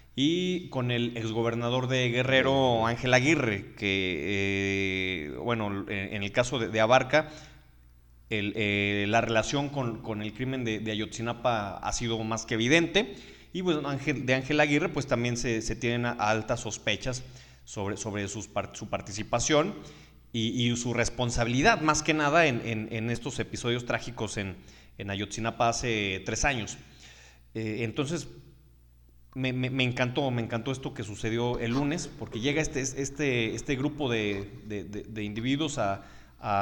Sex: male